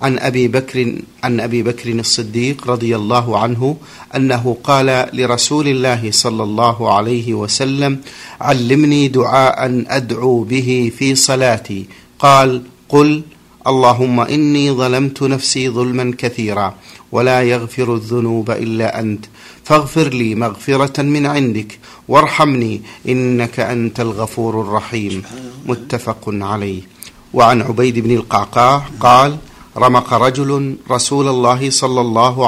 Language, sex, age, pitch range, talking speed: Arabic, male, 50-69, 115-130 Hz, 110 wpm